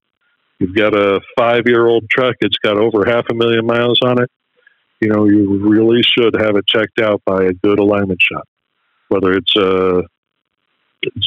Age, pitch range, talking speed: 50-69, 100-125 Hz, 180 wpm